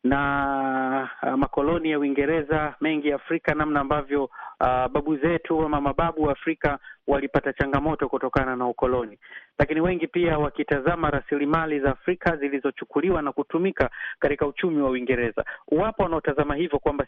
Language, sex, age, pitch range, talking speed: Swahili, male, 30-49, 140-170 Hz, 135 wpm